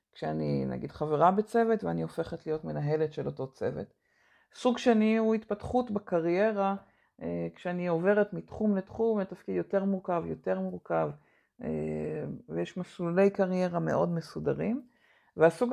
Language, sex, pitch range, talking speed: Hebrew, female, 165-210 Hz, 120 wpm